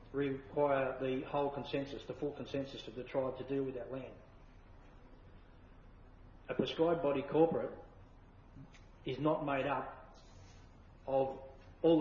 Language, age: English, 40-59